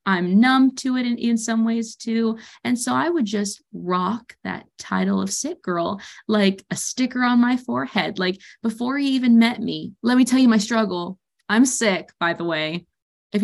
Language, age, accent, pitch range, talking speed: English, 20-39, American, 200-260 Hz, 195 wpm